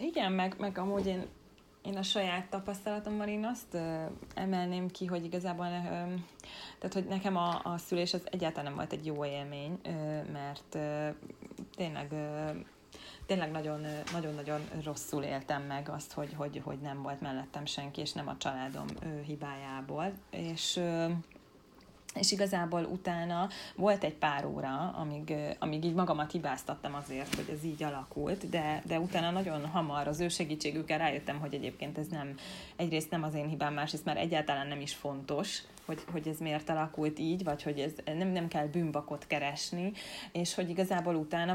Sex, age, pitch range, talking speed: female, 30-49, 150-185 Hz, 170 wpm